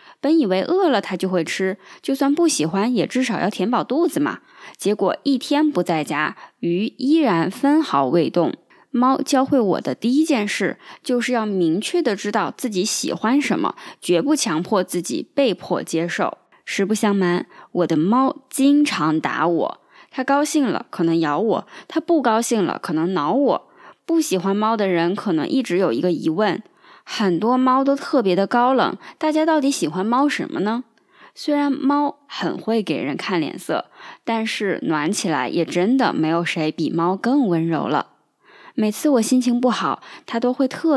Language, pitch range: Chinese, 185-275 Hz